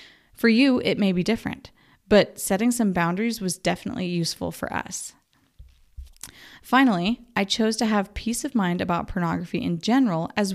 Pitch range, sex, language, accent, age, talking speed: 185-230 Hz, female, English, American, 20-39, 160 wpm